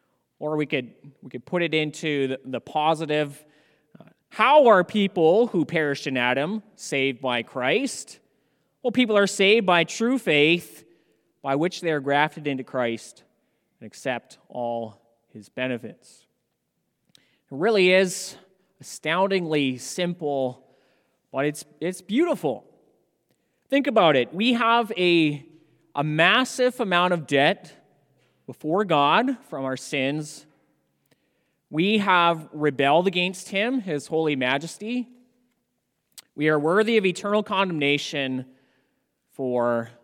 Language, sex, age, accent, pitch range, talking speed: English, male, 30-49, American, 140-200 Hz, 120 wpm